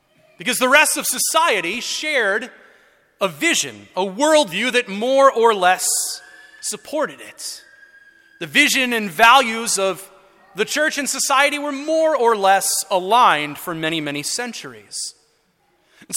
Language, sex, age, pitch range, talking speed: English, male, 30-49, 210-275 Hz, 130 wpm